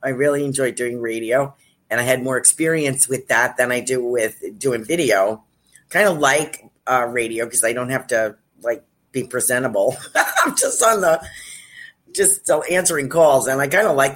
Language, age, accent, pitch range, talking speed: English, 50-69, American, 125-150 Hz, 185 wpm